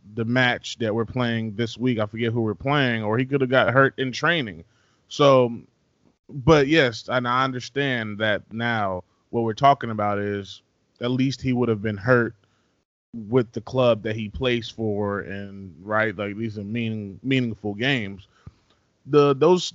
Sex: male